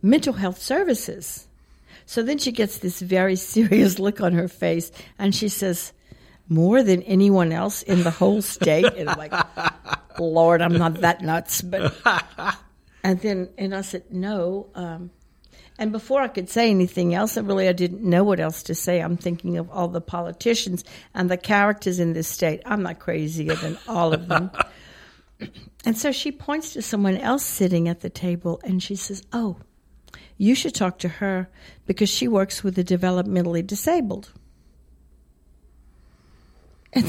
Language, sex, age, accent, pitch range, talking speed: English, female, 60-79, American, 175-205 Hz, 170 wpm